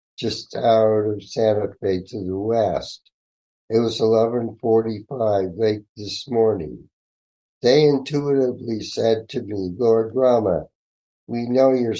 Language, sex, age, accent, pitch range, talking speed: English, male, 60-79, American, 105-125 Hz, 120 wpm